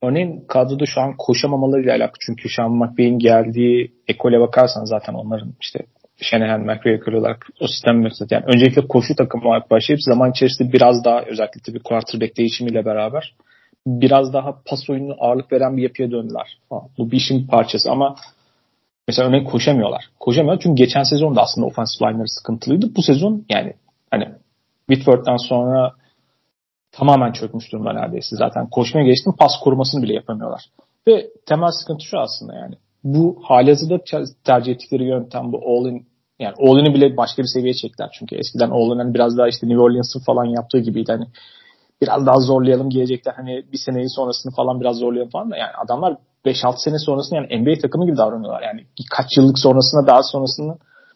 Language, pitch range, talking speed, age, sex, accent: Turkish, 120-140 Hz, 170 wpm, 40-59, male, native